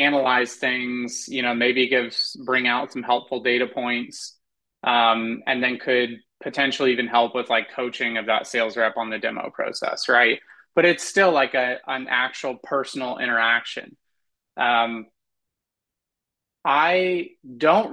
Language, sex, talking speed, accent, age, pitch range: English, male, 145 wpm, American, 20-39, 120-140 Hz